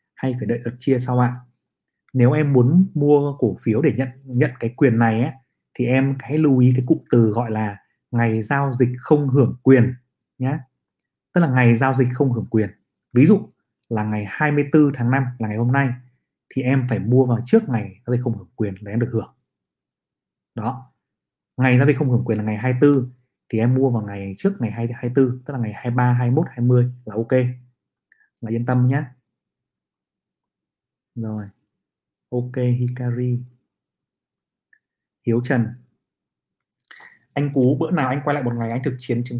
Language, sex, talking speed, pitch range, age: Vietnamese, male, 185 wpm, 115-135 Hz, 20-39